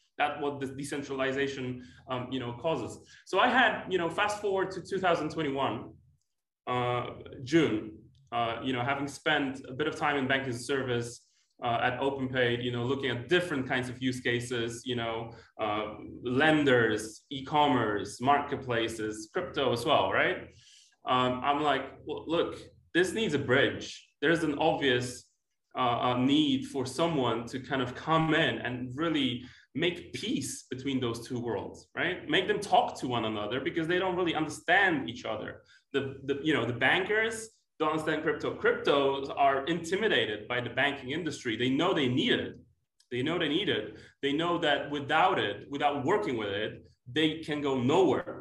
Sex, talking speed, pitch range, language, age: male, 165 wpm, 125-160 Hz, English, 20-39